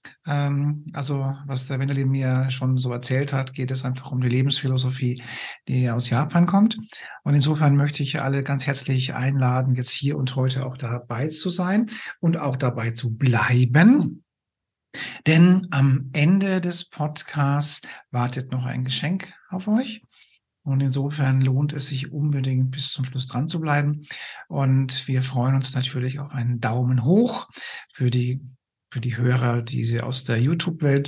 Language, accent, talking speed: German, German, 160 wpm